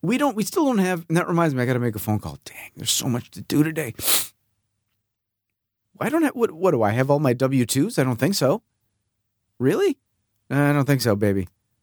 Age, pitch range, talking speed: 40-59, 105-145 Hz, 230 wpm